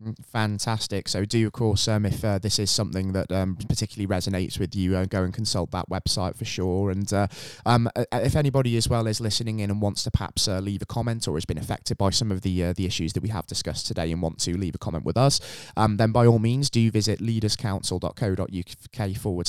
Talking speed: 235 wpm